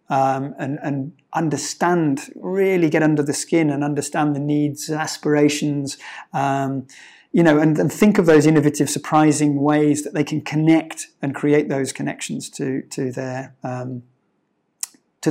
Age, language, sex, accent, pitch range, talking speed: 30-49, English, male, British, 140-155 Hz, 150 wpm